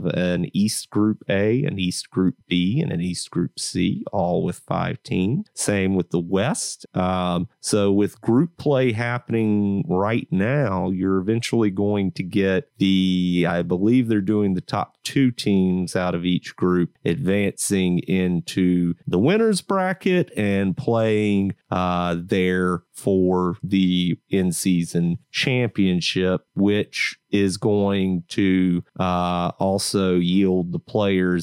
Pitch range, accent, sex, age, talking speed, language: 90-130 Hz, American, male, 30-49, 135 wpm, English